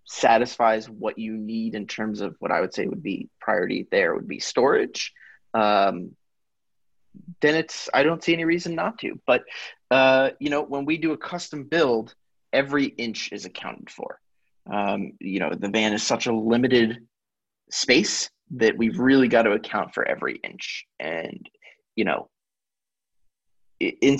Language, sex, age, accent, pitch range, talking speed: English, male, 30-49, American, 110-155 Hz, 165 wpm